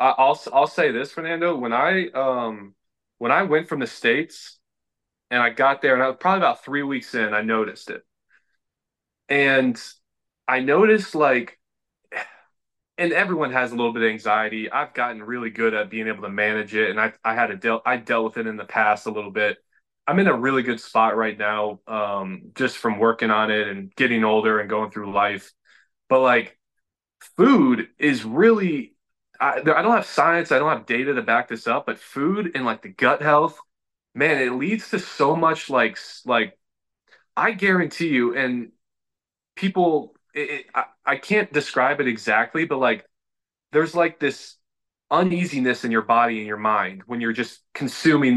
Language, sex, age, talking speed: English, male, 20-39, 185 wpm